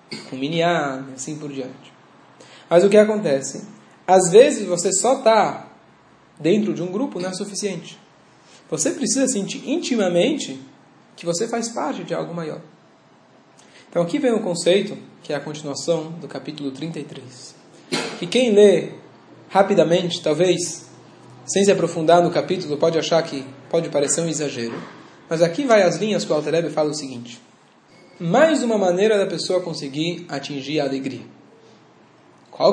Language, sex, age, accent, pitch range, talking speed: Portuguese, male, 20-39, Brazilian, 150-210 Hz, 150 wpm